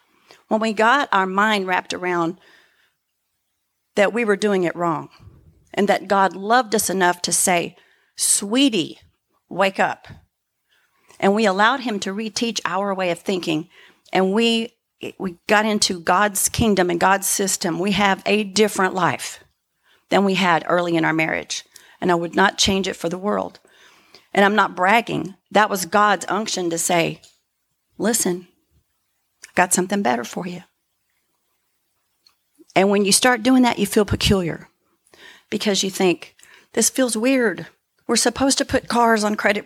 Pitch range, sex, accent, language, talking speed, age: 185-225 Hz, female, American, English, 155 wpm, 40-59